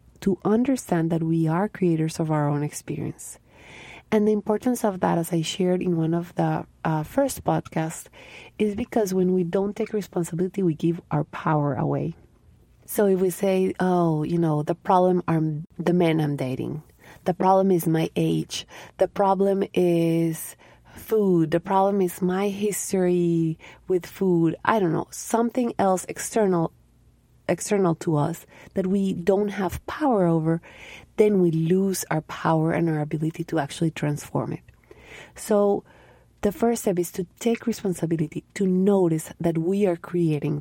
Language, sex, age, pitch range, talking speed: English, female, 30-49, 160-195 Hz, 160 wpm